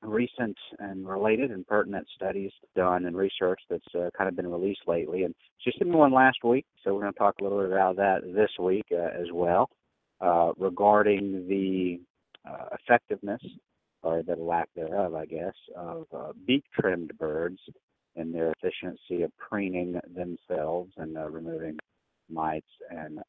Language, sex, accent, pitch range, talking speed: English, male, American, 90-120 Hz, 165 wpm